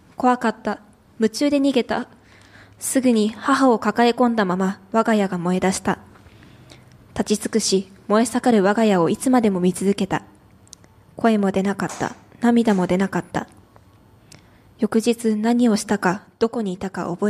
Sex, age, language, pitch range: female, 20-39, Japanese, 180-225 Hz